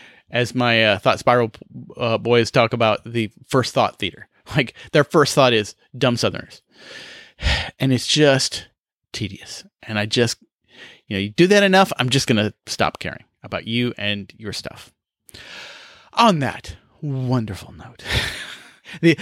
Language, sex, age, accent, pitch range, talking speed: English, male, 30-49, American, 110-140 Hz, 155 wpm